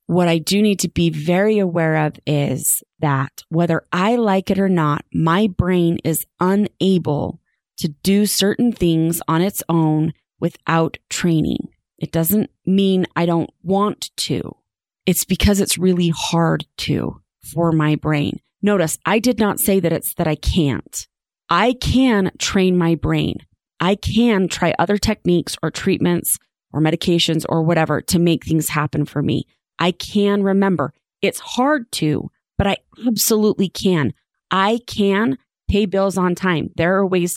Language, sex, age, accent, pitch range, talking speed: English, female, 30-49, American, 165-200 Hz, 155 wpm